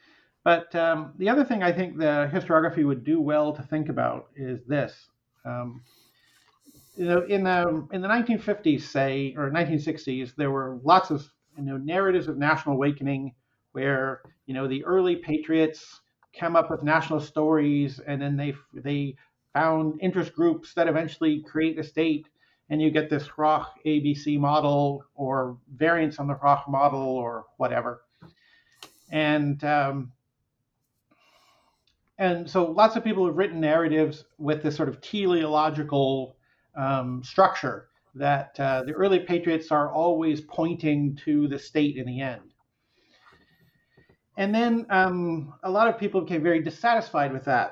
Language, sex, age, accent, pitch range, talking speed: English, male, 50-69, American, 140-170 Hz, 150 wpm